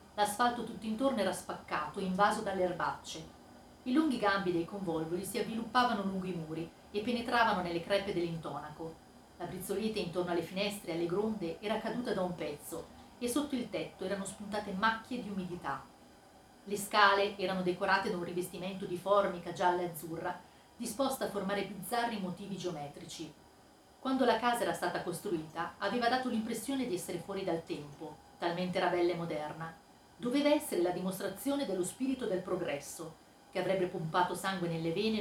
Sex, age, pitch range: female, 40-59, 175-220 Hz